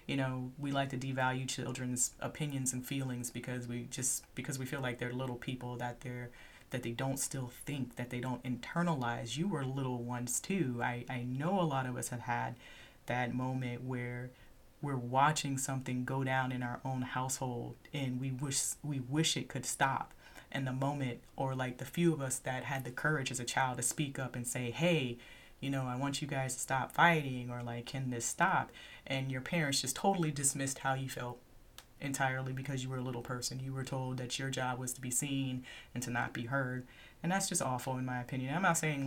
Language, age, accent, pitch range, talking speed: English, 30-49, American, 125-140 Hz, 220 wpm